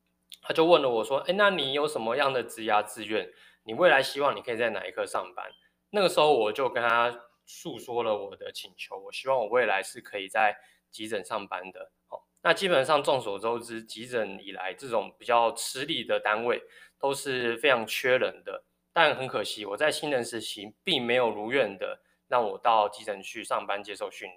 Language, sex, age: Chinese, male, 20-39